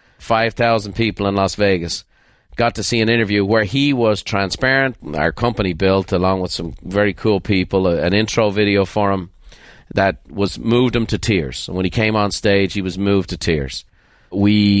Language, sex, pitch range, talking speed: English, male, 100-120 Hz, 180 wpm